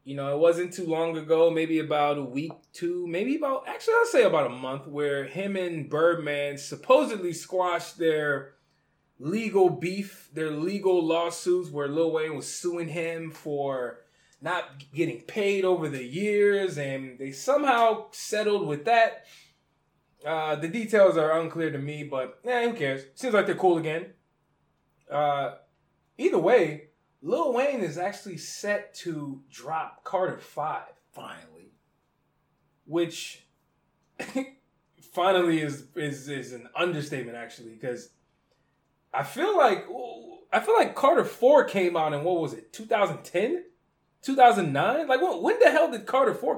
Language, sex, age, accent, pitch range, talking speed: English, male, 20-39, American, 145-195 Hz, 145 wpm